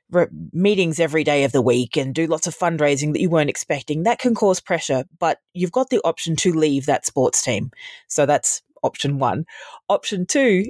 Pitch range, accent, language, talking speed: 140-180 Hz, Australian, English, 195 wpm